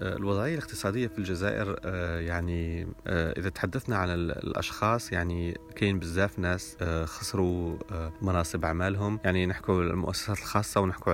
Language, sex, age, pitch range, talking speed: Arabic, male, 30-49, 85-100 Hz, 115 wpm